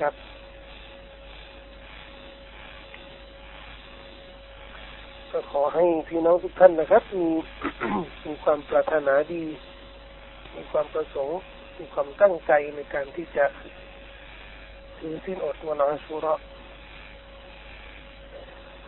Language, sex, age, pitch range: Thai, male, 60-79, 150-185 Hz